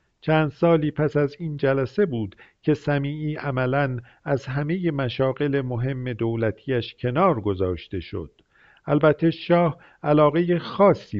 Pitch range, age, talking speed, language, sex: 120-145 Hz, 50-69, 120 wpm, Persian, male